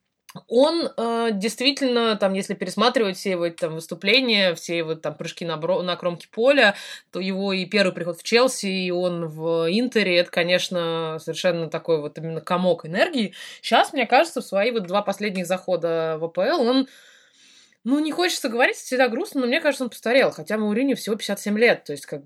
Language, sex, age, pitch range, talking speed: Russian, female, 20-39, 175-235 Hz, 175 wpm